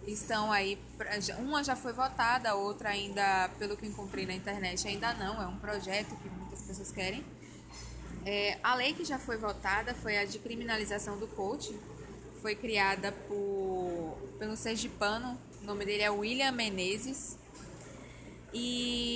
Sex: female